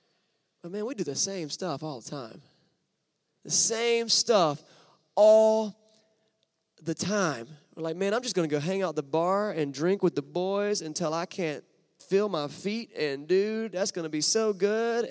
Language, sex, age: English, male, 20-39